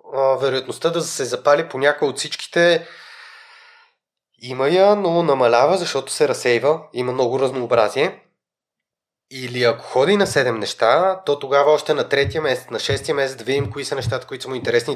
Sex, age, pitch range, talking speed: male, 30-49, 125-205 Hz, 170 wpm